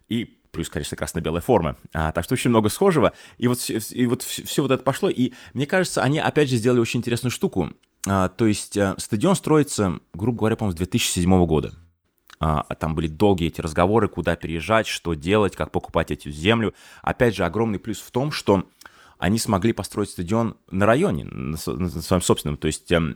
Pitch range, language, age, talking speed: 85-115 Hz, Russian, 20-39, 190 wpm